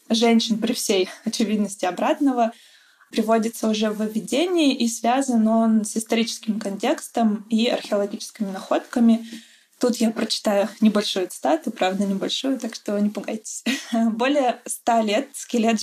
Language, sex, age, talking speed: Russian, female, 20-39, 125 wpm